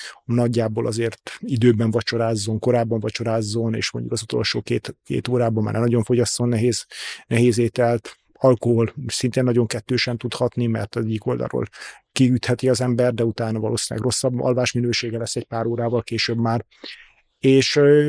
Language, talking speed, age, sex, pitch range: Hungarian, 145 wpm, 30-49, male, 115-130 Hz